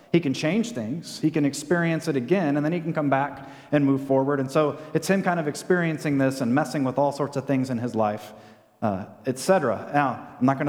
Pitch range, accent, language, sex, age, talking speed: 130-175 Hz, American, English, male, 30-49, 240 wpm